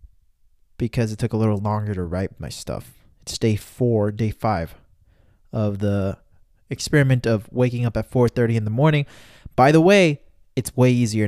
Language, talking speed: English, 170 wpm